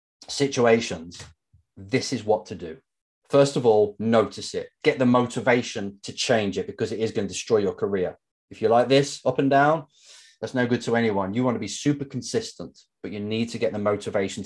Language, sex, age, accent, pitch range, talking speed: English, male, 30-49, British, 105-150 Hz, 210 wpm